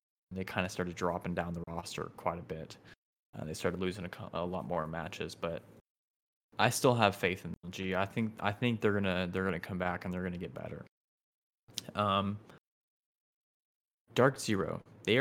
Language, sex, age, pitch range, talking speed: English, male, 20-39, 90-115 Hz, 180 wpm